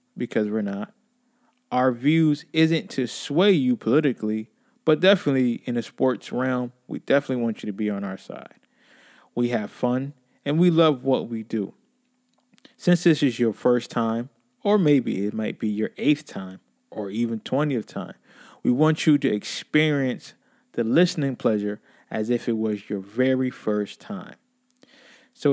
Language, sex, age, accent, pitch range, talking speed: English, male, 20-39, American, 115-180 Hz, 160 wpm